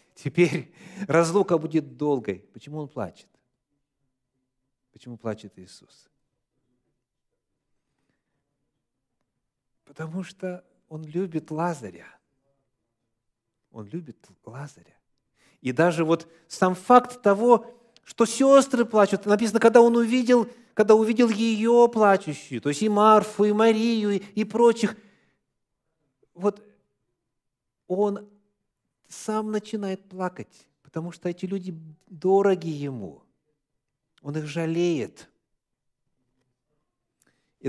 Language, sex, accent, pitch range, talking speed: Russian, male, native, 130-200 Hz, 90 wpm